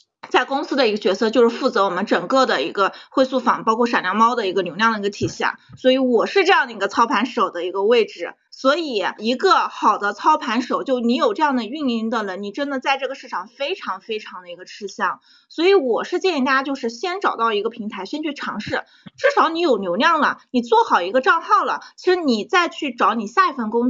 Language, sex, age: Chinese, female, 20-39